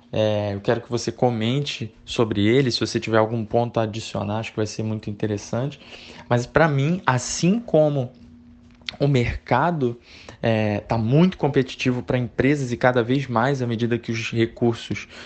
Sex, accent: male, Brazilian